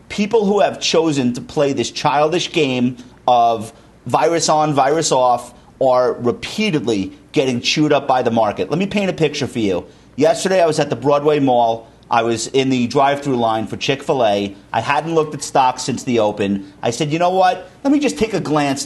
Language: English